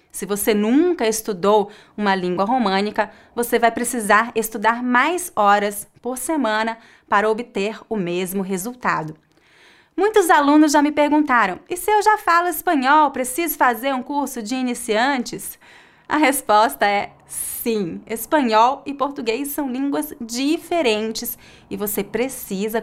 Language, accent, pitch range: English, Brazilian, 205-275 Hz